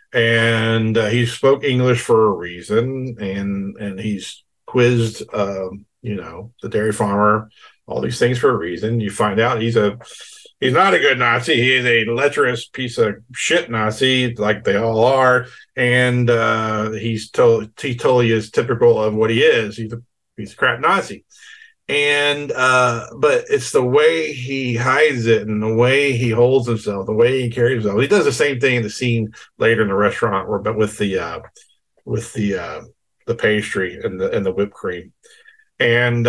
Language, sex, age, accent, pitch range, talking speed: English, male, 50-69, American, 110-130 Hz, 185 wpm